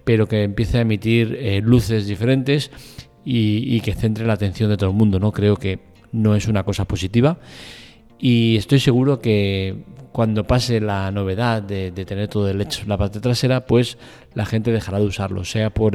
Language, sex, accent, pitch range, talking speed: Spanish, male, Spanish, 100-120 Hz, 195 wpm